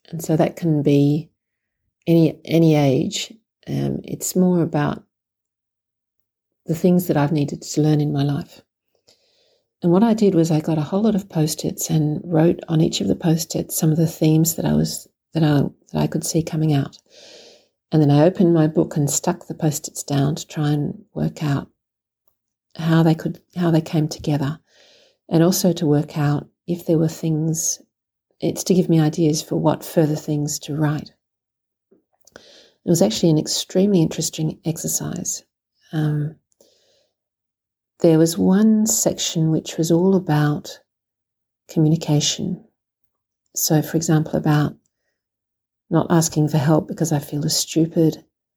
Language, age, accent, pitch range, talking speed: English, 50-69, Australian, 150-170 Hz, 165 wpm